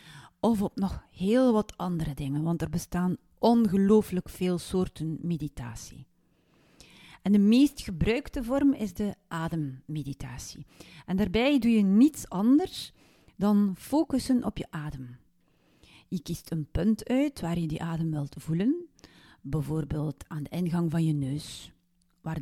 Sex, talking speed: female, 140 wpm